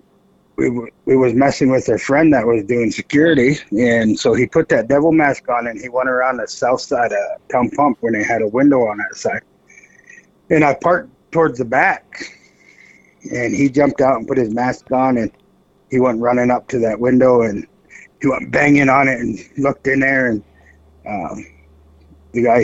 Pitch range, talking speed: 110-140 Hz, 195 wpm